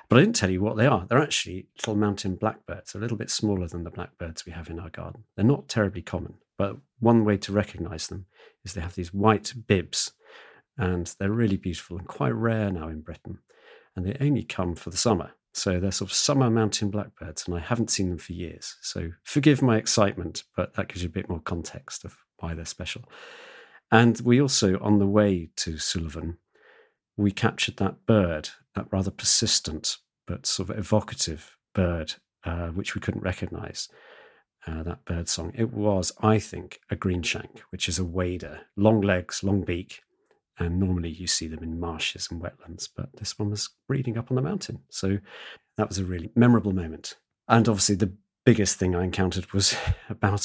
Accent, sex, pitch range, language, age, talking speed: British, male, 90-110 Hz, English, 40-59, 195 wpm